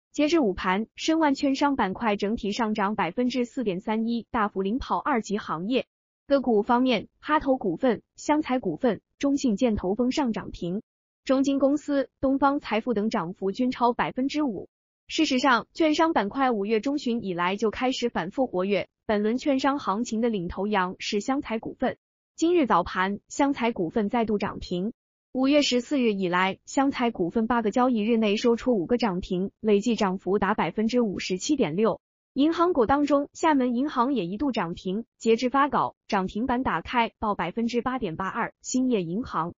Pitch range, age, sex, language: 205-265 Hz, 20-39, female, Chinese